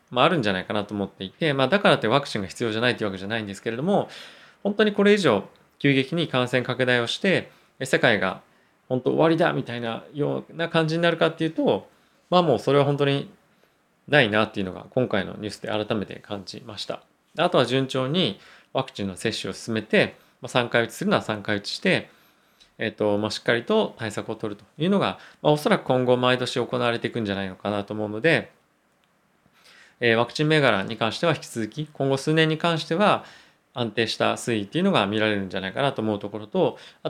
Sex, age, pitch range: male, 20-39, 110-150 Hz